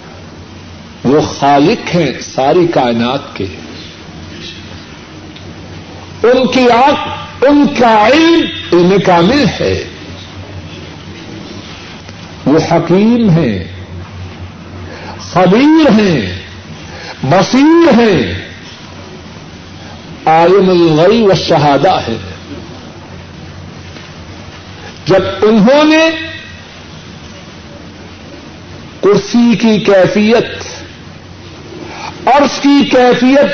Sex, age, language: male, 60-79, Urdu